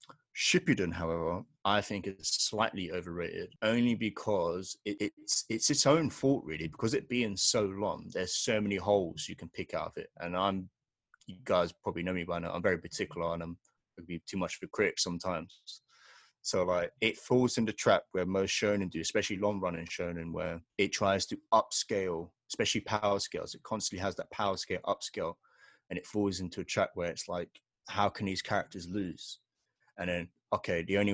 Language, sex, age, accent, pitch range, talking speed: English, male, 20-39, British, 90-105 Hz, 195 wpm